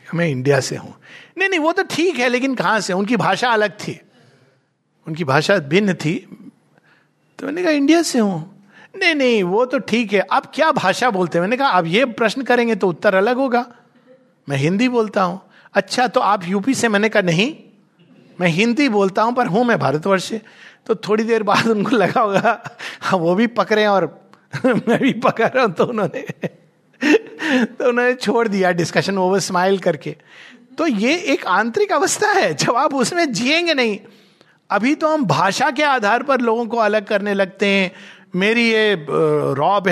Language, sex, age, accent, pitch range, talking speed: Hindi, male, 60-79, native, 180-250 Hz, 180 wpm